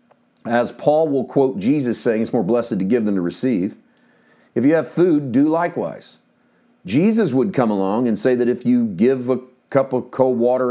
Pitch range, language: 130-185 Hz, English